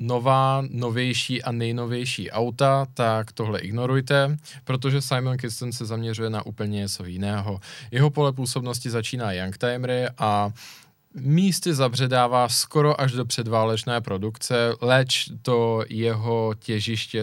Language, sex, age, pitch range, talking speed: Czech, male, 20-39, 105-130 Hz, 120 wpm